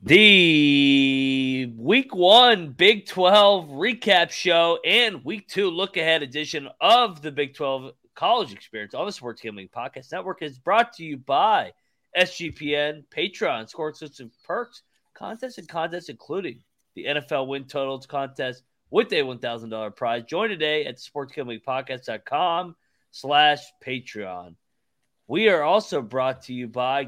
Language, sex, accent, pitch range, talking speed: English, male, American, 130-165 Hz, 135 wpm